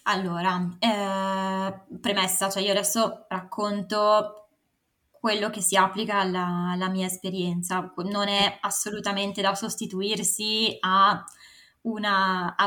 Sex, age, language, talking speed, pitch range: female, 20-39, Italian, 105 wpm, 190-210 Hz